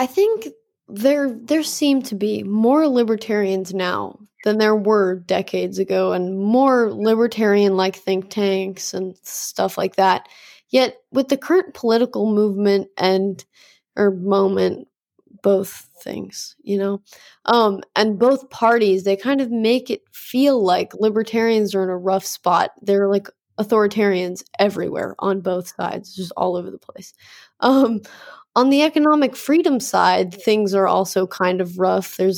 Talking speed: 150 wpm